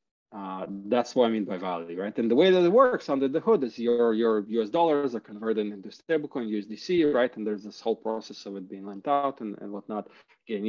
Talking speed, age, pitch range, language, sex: 235 wpm, 40-59, 110-150 Hz, English, male